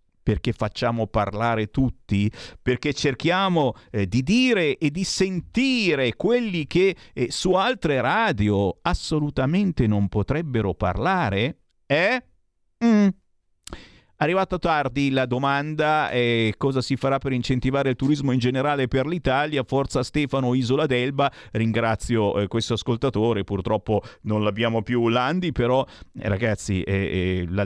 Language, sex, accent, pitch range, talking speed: Italian, male, native, 105-155 Hz, 120 wpm